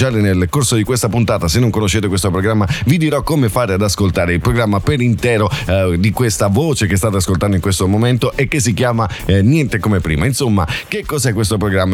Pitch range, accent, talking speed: 95-125 Hz, native, 220 wpm